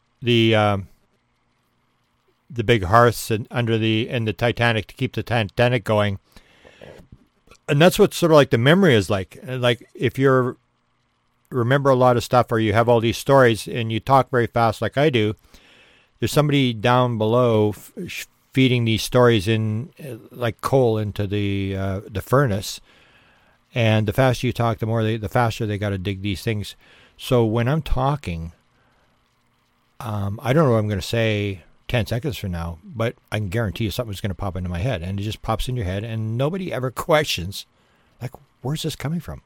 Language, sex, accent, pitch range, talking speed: English, male, American, 105-125 Hz, 185 wpm